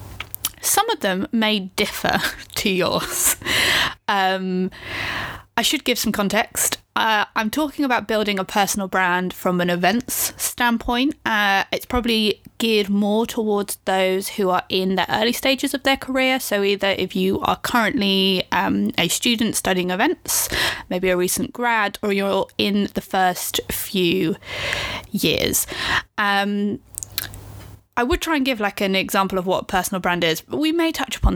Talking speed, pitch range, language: 160 wpm, 180-225 Hz, English